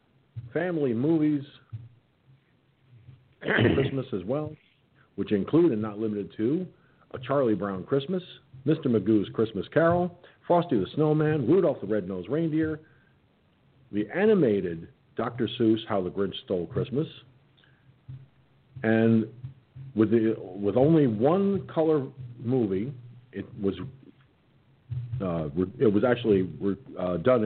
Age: 50-69